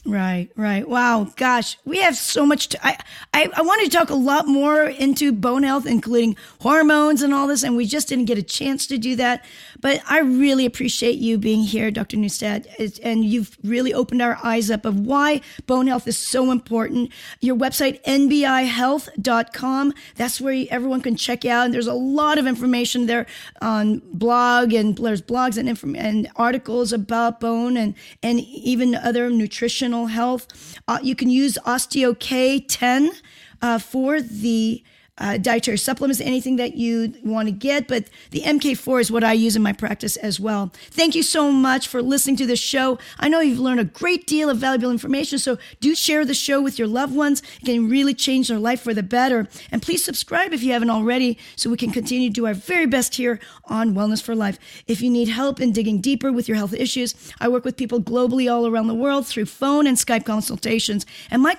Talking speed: 205 wpm